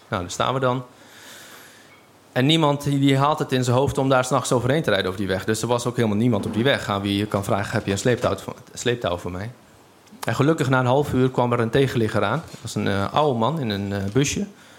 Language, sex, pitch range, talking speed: Dutch, male, 110-130 Hz, 255 wpm